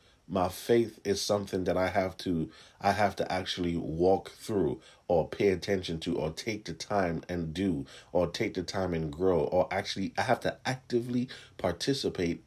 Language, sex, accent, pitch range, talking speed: English, male, American, 95-115 Hz, 180 wpm